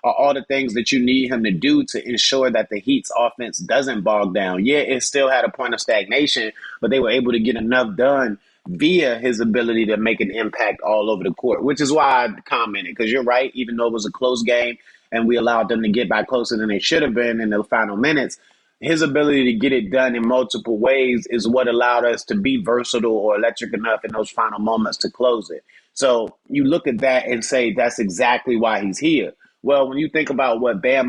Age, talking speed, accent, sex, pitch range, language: 30-49, 235 wpm, American, male, 115-135 Hz, English